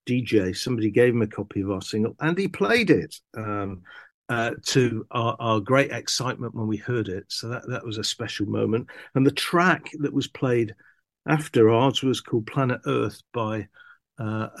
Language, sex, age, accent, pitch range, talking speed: English, male, 50-69, British, 110-135 Hz, 185 wpm